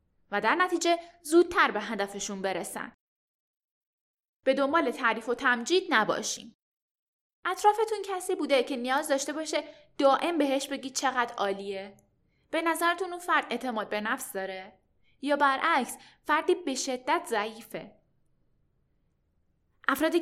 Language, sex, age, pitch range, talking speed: Persian, female, 10-29, 215-310 Hz, 120 wpm